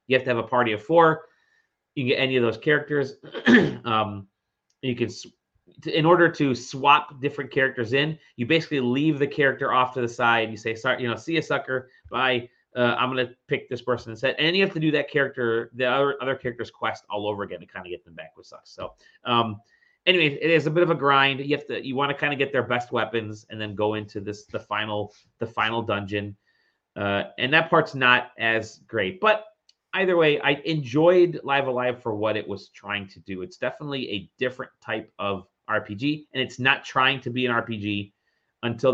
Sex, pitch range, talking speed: male, 110-145 Hz, 220 wpm